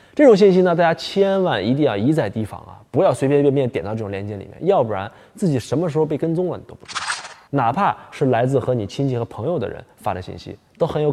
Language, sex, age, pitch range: Chinese, male, 20-39, 115-160 Hz